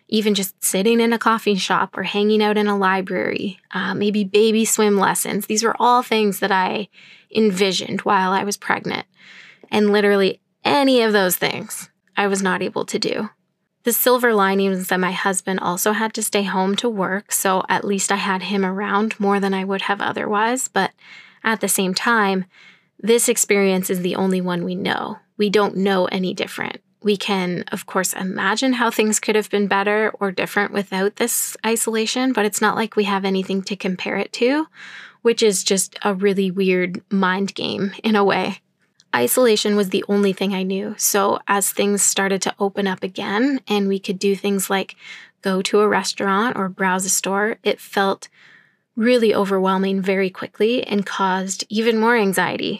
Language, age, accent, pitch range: English, 10-29, American, 190-210 Hz